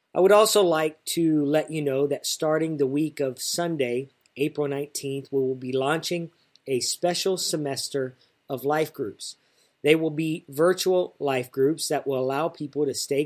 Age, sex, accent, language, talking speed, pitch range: 40-59, male, American, English, 170 wpm, 135-160 Hz